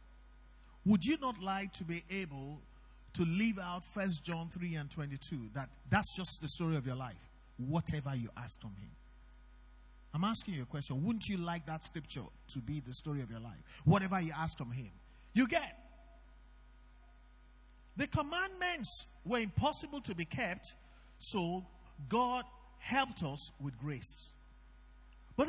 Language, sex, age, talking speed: English, male, 50-69, 155 wpm